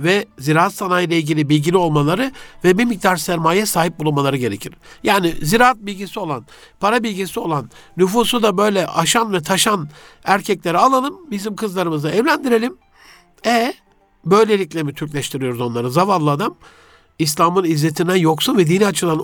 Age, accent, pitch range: 60-79, native, 155-200 Hz